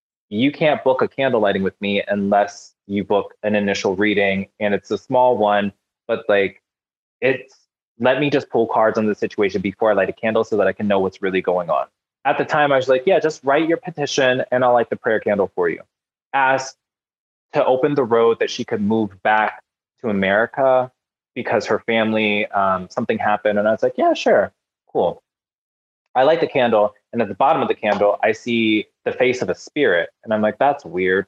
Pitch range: 105-140 Hz